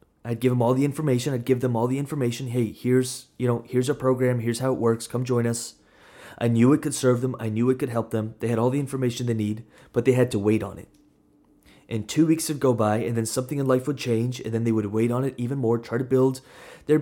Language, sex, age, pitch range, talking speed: English, male, 20-39, 110-130 Hz, 275 wpm